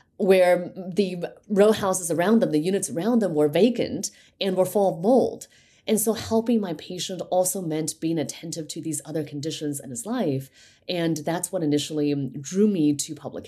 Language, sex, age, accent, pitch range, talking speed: English, female, 30-49, American, 145-190 Hz, 185 wpm